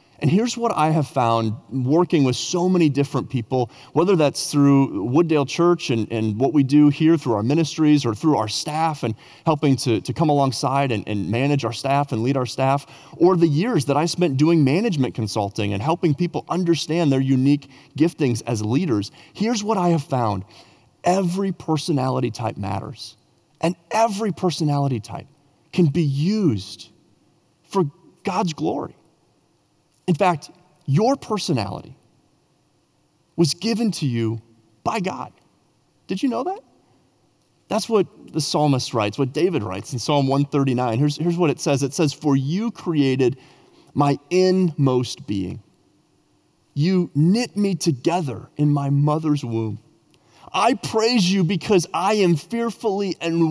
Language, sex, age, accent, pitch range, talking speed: English, male, 30-49, American, 130-175 Hz, 155 wpm